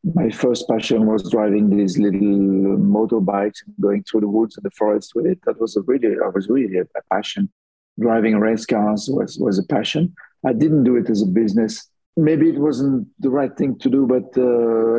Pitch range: 105-120 Hz